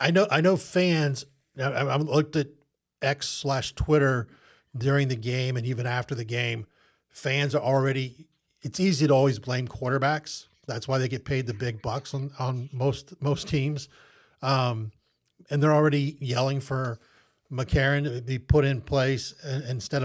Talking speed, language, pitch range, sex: 170 wpm, English, 125-145 Hz, male